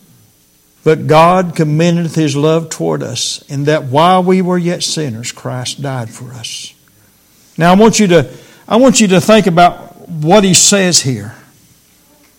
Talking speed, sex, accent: 160 wpm, male, American